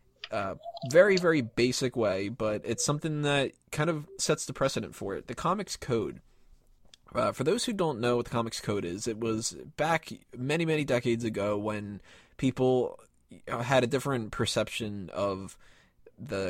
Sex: male